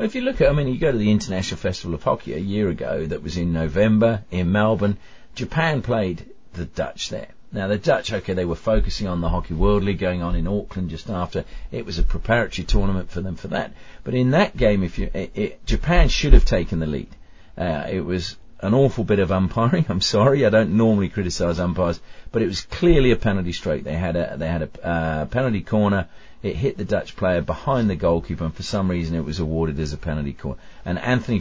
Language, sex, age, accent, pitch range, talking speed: English, male, 40-59, British, 85-115 Hz, 230 wpm